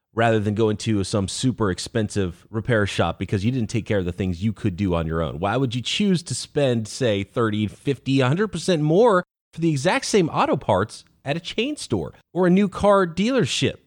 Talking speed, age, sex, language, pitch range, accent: 210 wpm, 30-49, male, English, 105-155 Hz, American